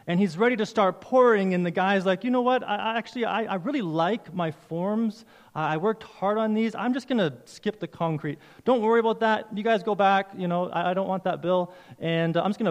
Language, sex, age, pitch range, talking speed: English, male, 30-49, 165-195 Hz, 265 wpm